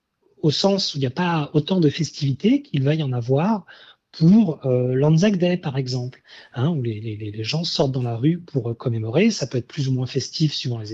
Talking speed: 235 wpm